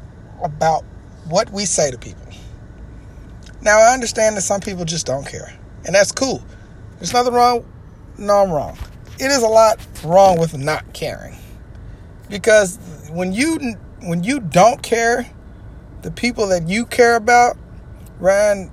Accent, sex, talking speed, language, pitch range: American, male, 145 wpm, English, 115-180 Hz